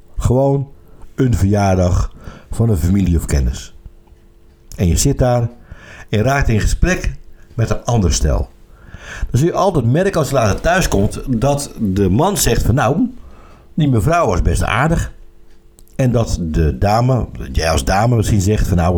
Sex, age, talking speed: male, 60-79, 160 wpm